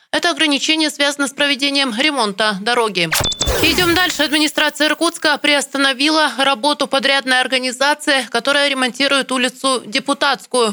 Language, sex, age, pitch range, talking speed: Russian, female, 20-39, 245-285 Hz, 105 wpm